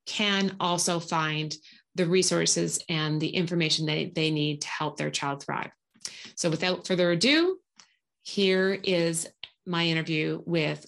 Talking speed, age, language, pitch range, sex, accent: 140 wpm, 30-49, English, 175-210 Hz, female, American